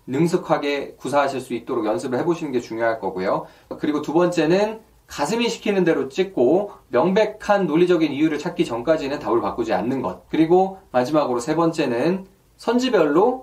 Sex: male